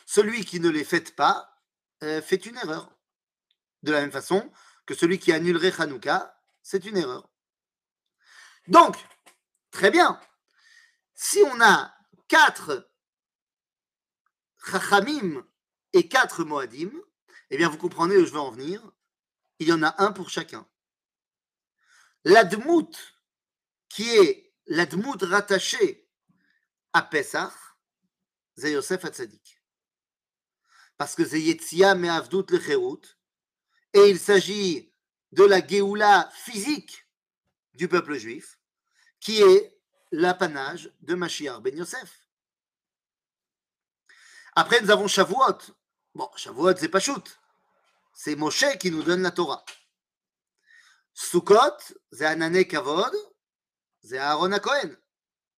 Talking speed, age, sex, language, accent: 115 wpm, 40-59, male, French, French